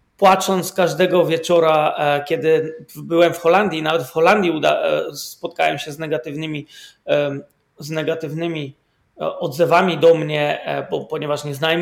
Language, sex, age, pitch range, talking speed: Polish, male, 30-49, 150-175 Hz, 120 wpm